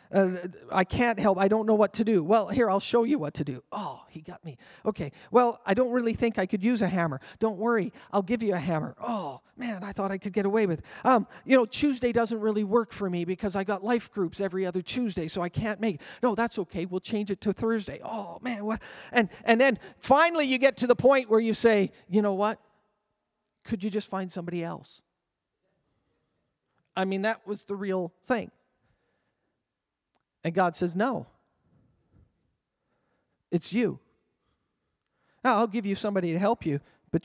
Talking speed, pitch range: 200 wpm, 180-230 Hz